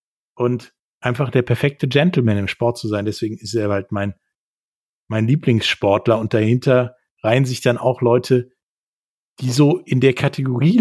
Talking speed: 155 wpm